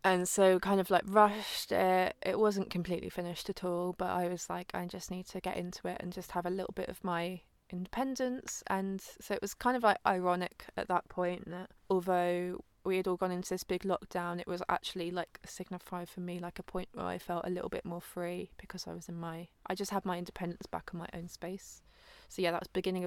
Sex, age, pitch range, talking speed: female, 20-39, 180-195 Hz, 240 wpm